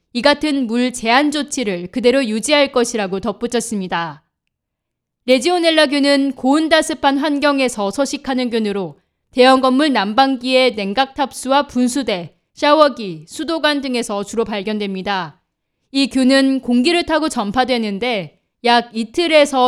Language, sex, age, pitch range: Korean, female, 20-39, 215-290 Hz